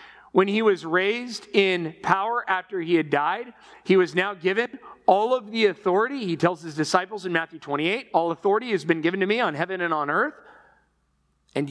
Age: 40-59